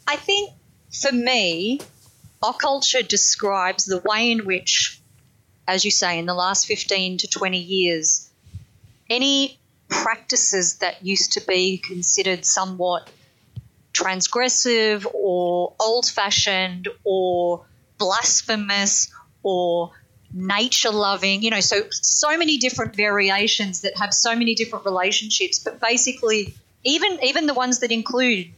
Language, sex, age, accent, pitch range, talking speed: English, female, 30-49, Australian, 180-225 Hz, 125 wpm